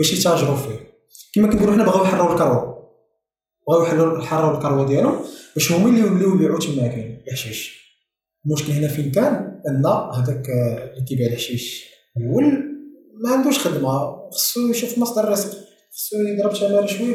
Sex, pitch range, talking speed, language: male, 130-175 Hz, 145 wpm, Arabic